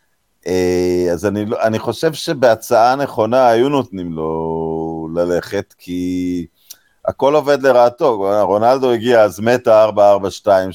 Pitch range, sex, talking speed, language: 90-120 Hz, male, 105 wpm, Hebrew